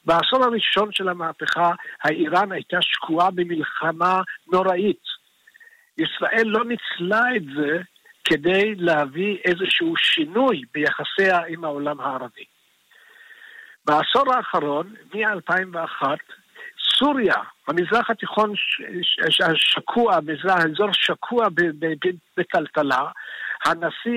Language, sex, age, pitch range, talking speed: Hebrew, male, 60-79, 165-235 Hz, 100 wpm